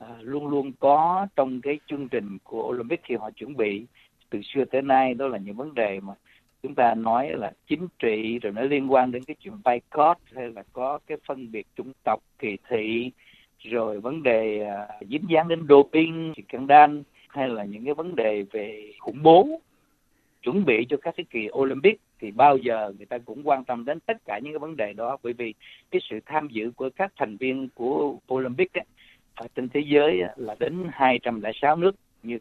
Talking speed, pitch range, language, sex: 205 wpm, 115-150 Hz, Vietnamese, male